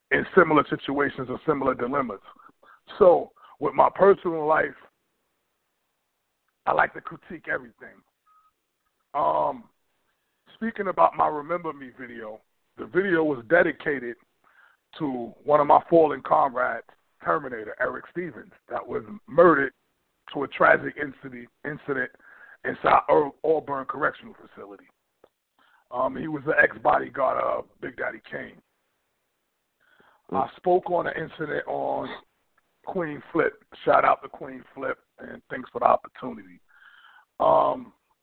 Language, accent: English, American